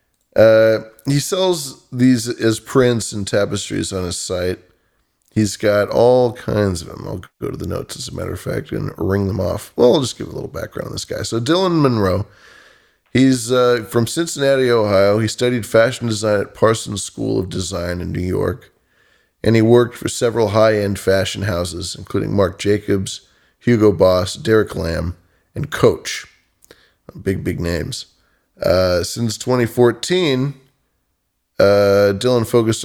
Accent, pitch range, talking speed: American, 95-120 Hz, 160 wpm